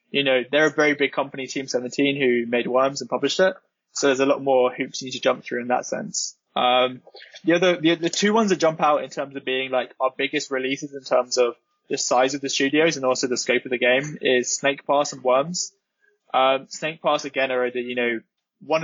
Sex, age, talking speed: male, 20-39, 240 wpm